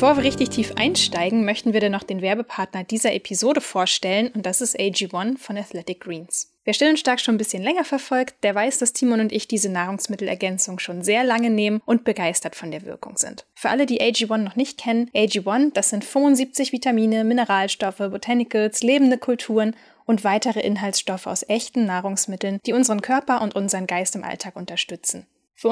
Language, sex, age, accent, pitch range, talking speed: German, female, 10-29, German, 195-235 Hz, 185 wpm